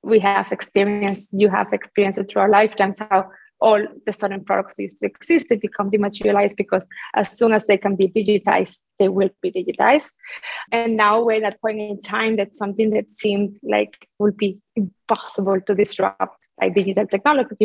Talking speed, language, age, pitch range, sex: 185 wpm, English, 20-39, 205-230 Hz, female